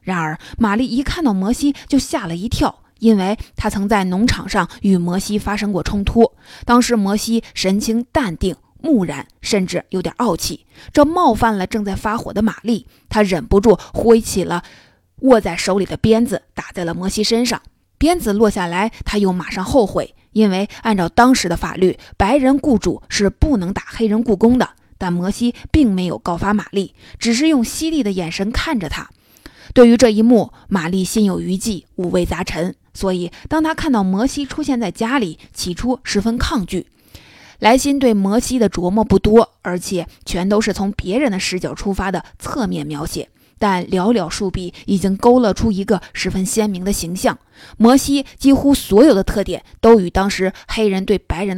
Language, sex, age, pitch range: Chinese, female, 20-39, 185-235 Hz